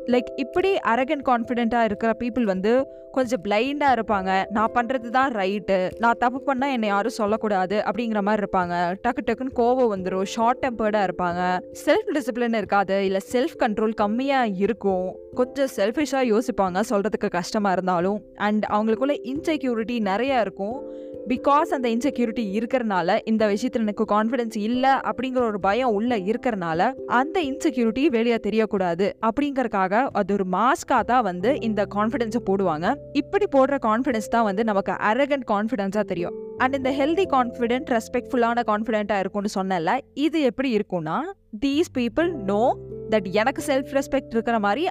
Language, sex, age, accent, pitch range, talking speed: Tamil, female, 20-39, native, 205-260 Hz, 140 wpm